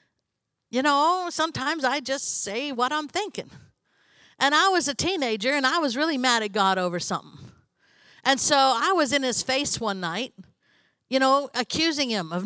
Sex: female